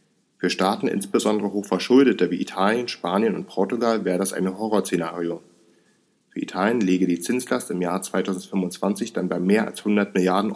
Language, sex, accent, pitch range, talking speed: German, male, German, 90-105 Hz, 155 wpm